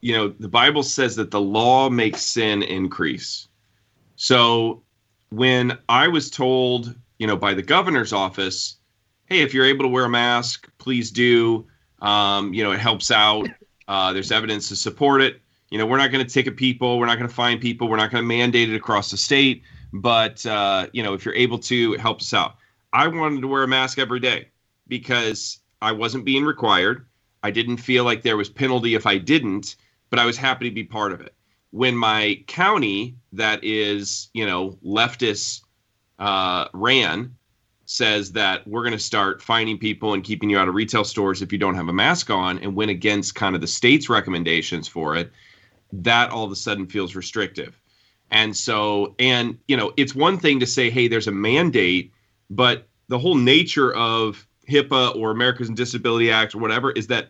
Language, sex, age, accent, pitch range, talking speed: English, male, 30-49, American, 105-125 Hz, 195 wpm